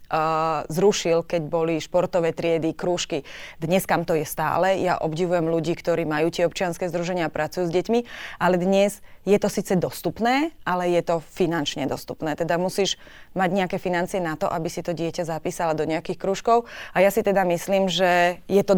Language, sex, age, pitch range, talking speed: Slovak, female, 20-39, 165-185 Hz, 180 wpm